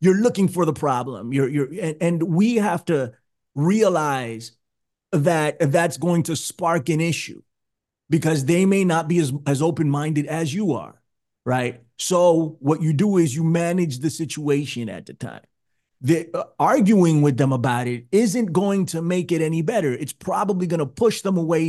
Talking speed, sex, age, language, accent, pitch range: 175 wpm, male, 30-49, English, American, 145-180 Hz